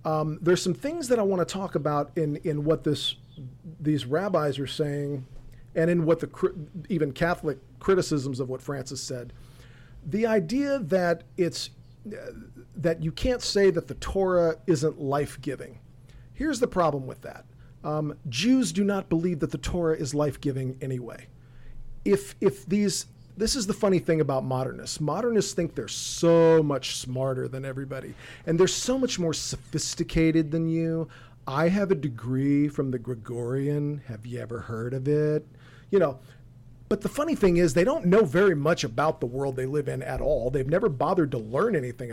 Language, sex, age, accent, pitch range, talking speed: English, male, 40-59, American, 130-180 Hz, 175 wpm